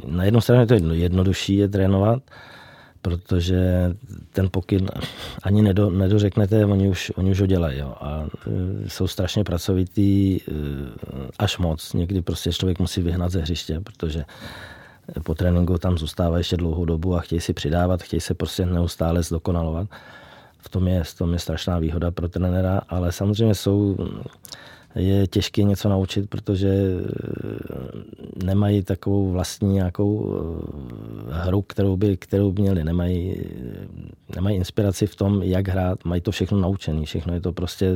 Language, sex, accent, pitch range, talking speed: Czech, male, native, 85-95 Hz, 145 wpm